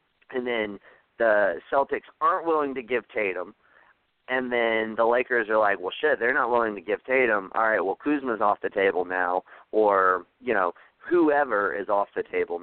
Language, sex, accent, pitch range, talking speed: English, male, American, 115-150 Hz, 185 wpm